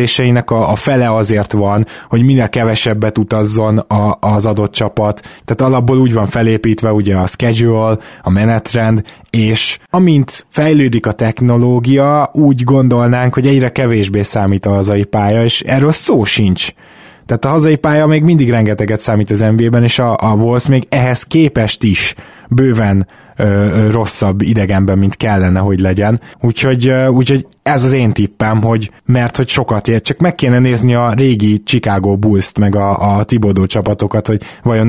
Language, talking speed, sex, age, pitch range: Hungarian, 160 wpm, male, 20-39, 105-125 Hz